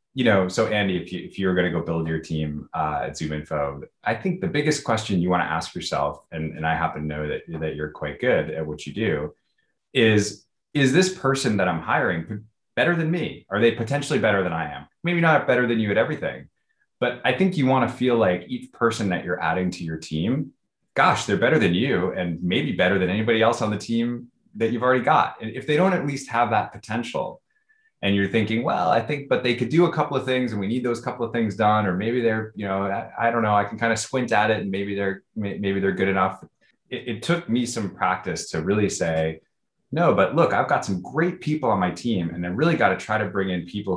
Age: 20-39